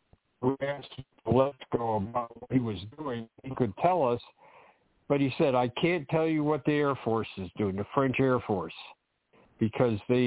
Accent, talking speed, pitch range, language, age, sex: American, 180 wpm, 115-145 Hz, English, 60-79, male